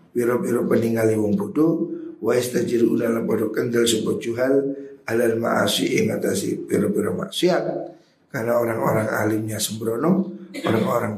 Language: Indonesian